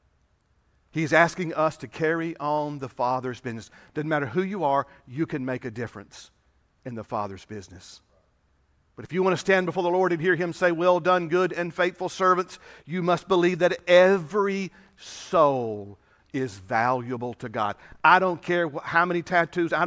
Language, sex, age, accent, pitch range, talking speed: English, male, 50-69, American, 110-175 Hz, 180 wpm